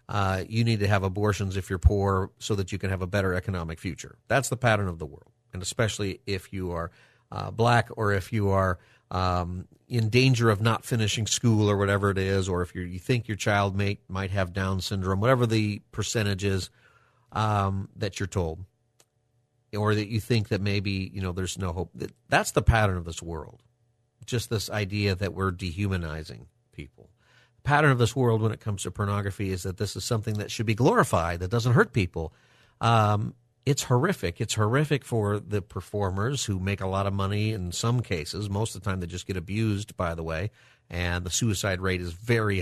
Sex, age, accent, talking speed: male, 40-59, American, 205 wpm